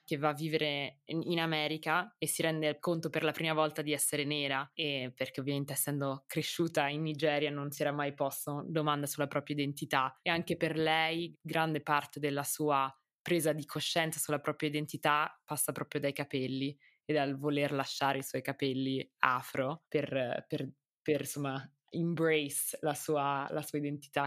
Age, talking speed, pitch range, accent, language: 20-39, 175 wpm, 140-155 Hz, native, Italian